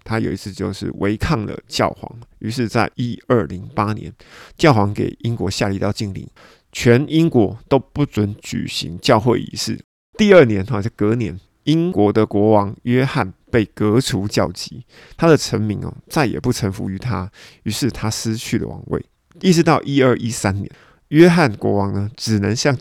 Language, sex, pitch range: Chinese, male, 100-130 Hz